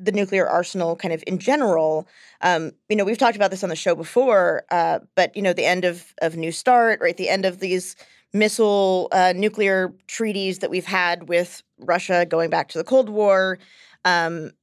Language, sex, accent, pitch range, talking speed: English, female, American, 180-210 Hz, 200 wpm